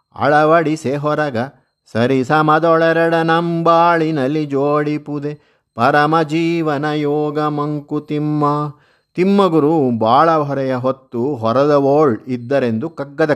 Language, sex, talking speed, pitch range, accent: Kannada, male, 80 wpm, 130-160 Hz, native